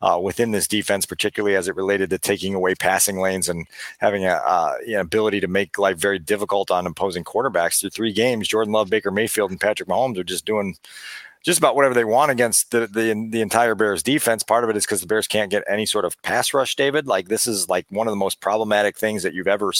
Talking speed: 240 wpm